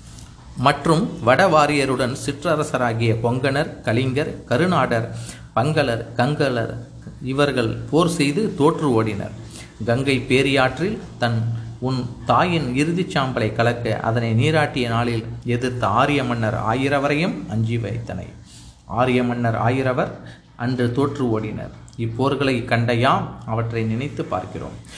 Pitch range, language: 115-140 Hz, Tamil